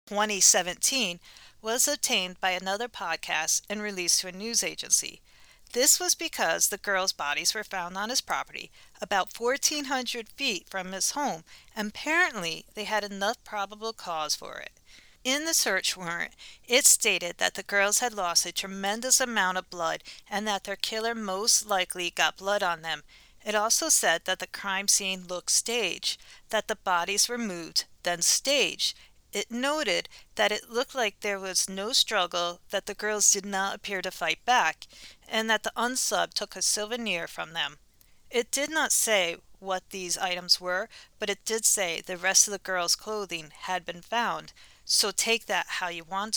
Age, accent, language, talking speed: 40-59, American, English, 175 wpm